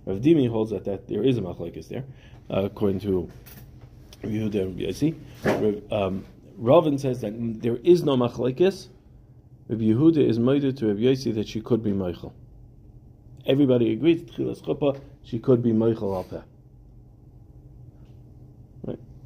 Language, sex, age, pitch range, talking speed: English, male, 40-59, 105-125 Hz, 140 wpm